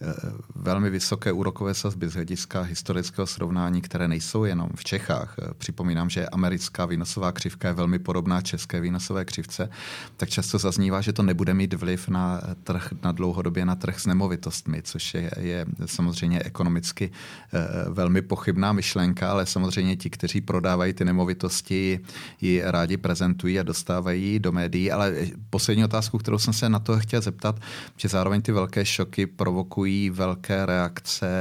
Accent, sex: Czech, male